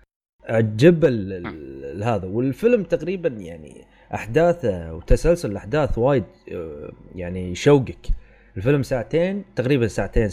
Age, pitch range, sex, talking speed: 30-49, 100-140 Hz, male, 95 wpm